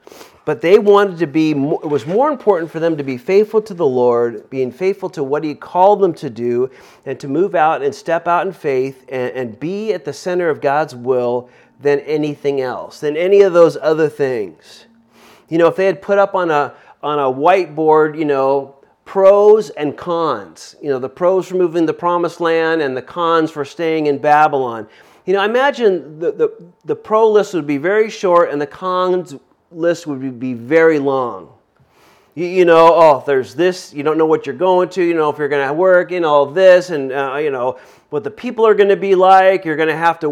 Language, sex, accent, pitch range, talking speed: English, male, American, 145-190 Hz, 220 wpm